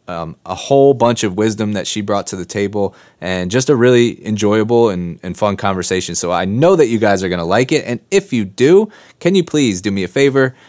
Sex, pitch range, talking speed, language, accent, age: male, 95-120 Hz, 240 wpm, English, American, 20-39